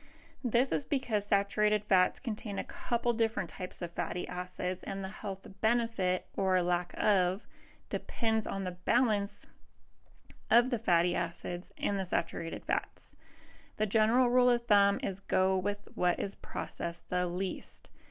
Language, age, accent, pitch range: English, 30-49, American, 185-235 Hz